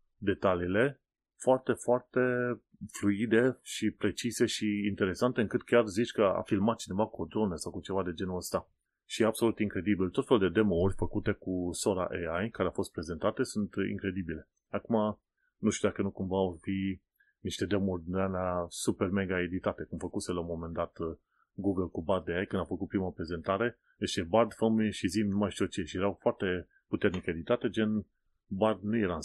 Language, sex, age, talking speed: Romanian, male, 30-49, 185 wpm